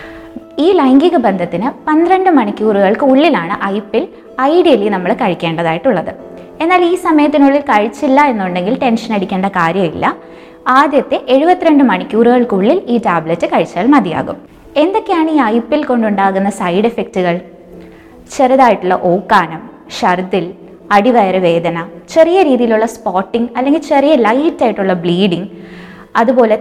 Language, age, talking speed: Malayalam, 20-39, 95 wpm